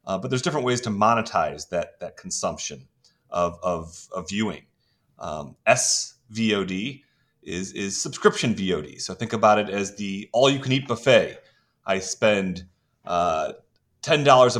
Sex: male